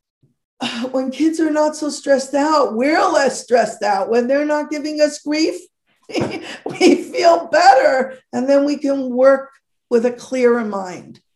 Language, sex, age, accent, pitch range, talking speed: English, female, 50-69, American, 235-290 Hz, 155 wpm